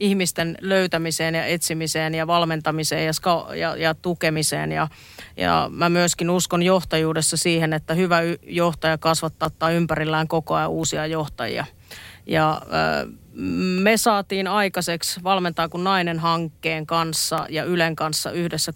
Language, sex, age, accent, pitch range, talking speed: Finnish, female, 30-49, native, 160-175 Hz, 125 wpm